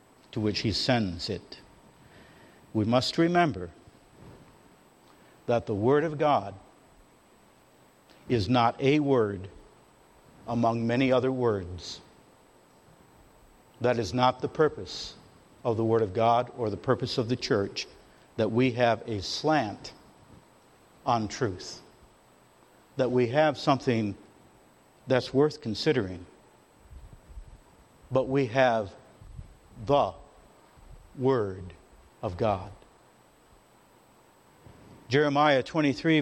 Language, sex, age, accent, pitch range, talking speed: English, male, 60-79, American, 110-140 Hz, 100 wpm